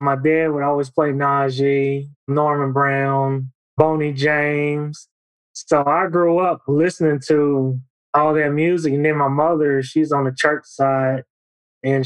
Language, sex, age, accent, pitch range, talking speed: English, male, 20-39, American, 135-160 Hz, 145 wpm